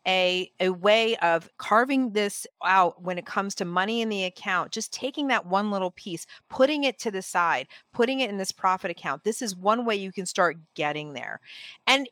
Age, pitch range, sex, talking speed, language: 40-59, 185-235 Hz, female, 210 wpm, English